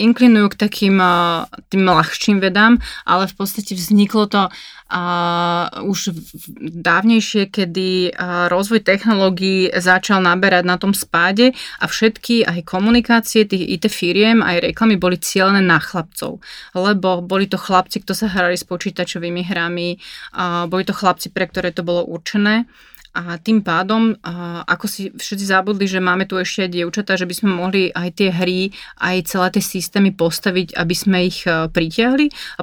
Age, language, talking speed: 30-49, Slovak, 155 wpm